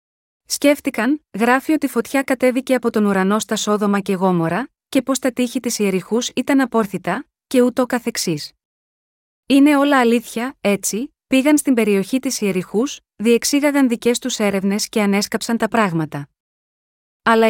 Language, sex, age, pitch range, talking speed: Greek, female, 20-39, 200-250 Hz, 140 wpm